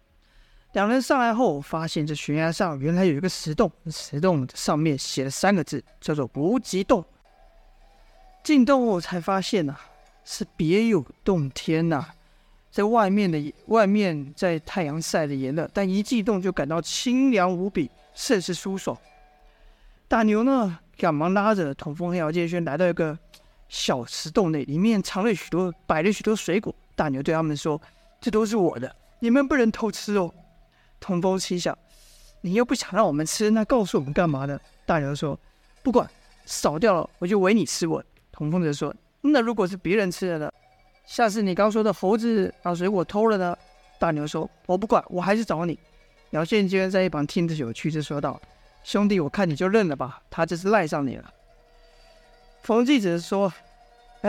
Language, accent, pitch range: Chinese, native, 155-215 Hz